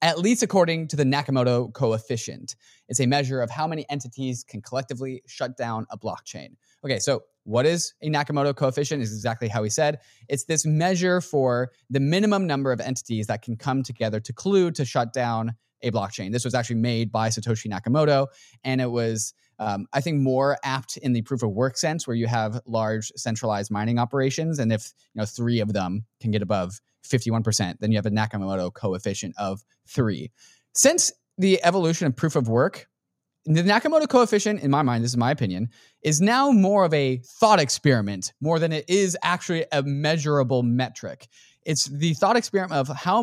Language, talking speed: English, 190 wpm